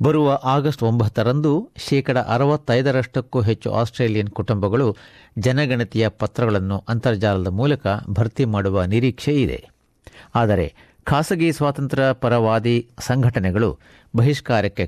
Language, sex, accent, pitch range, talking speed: Kannada, male, native, 105-140 Hz, 90 wpm